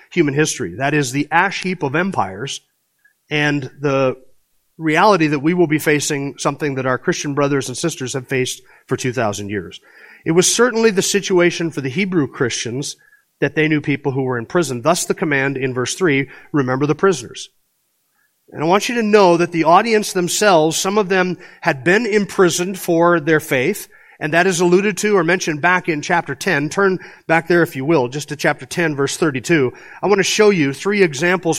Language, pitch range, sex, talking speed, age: English, 150-195 Hz, male, 200 wpm, 40-59